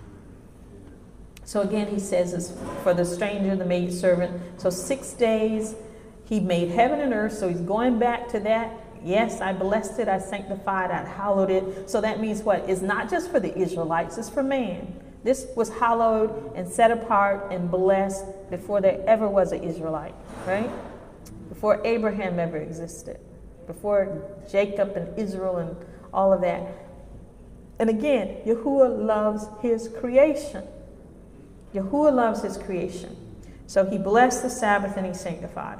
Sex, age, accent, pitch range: female, 40-59, American, 185-225 Hz